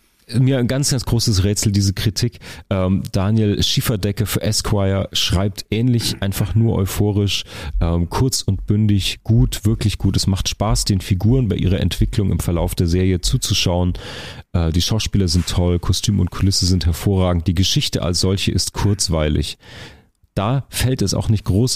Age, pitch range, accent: 40-59, 90-115 Hz, German